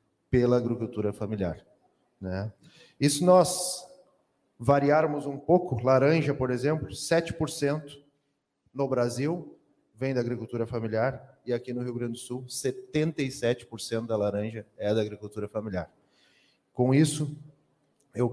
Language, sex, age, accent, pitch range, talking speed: Portuguese, male, 40-59, Brazilian, 120-140 Hz, 120 wpm